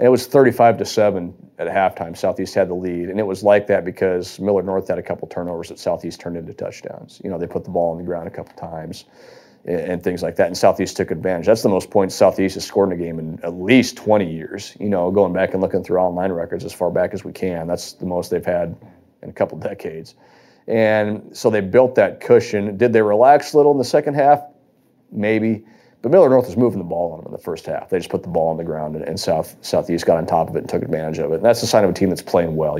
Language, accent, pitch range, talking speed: English, American, 85-110 Hz, 275 wpm